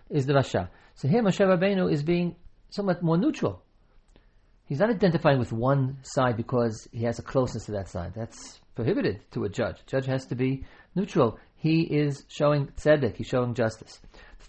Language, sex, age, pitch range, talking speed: English, male, 40-59, 115-155 Hz, 185 wpm